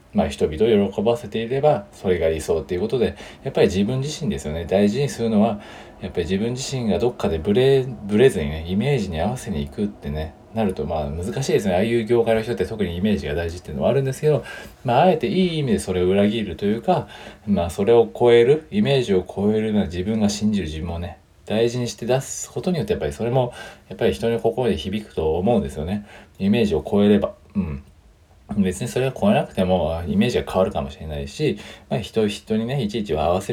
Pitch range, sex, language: 90-115 Hz, male, Japanese